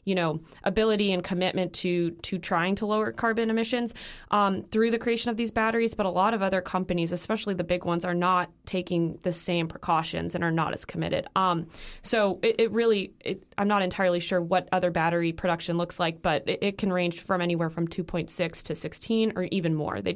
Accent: American